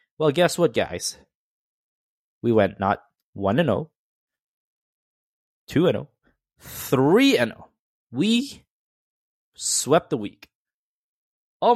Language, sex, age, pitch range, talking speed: English, male, 20-39, 95-120 Hz, 80 wpm